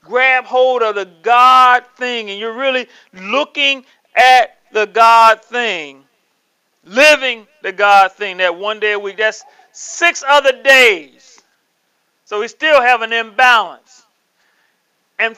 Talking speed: 135 wpm